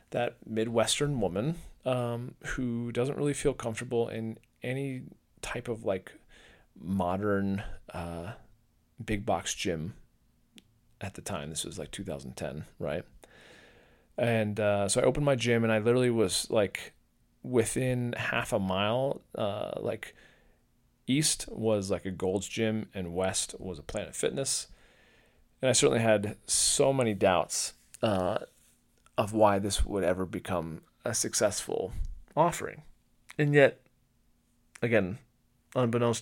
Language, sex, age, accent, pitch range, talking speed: English, male, 30-49, American, 95-120 Hz, 130 wpm